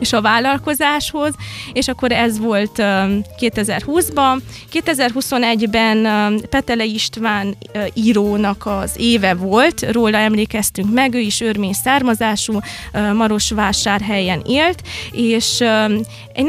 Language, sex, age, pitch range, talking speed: Hungarian, female, 20-39, 210-260 Hz, 100 wpm